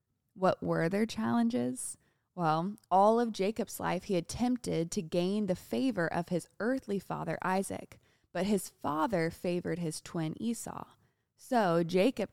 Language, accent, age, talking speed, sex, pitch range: English, American, 20-39, 140 wpm, female, 165-205 Hz